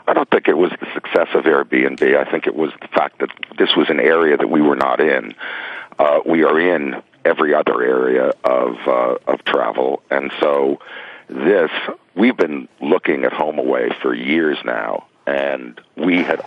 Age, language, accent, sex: 50-69, Korean, American, male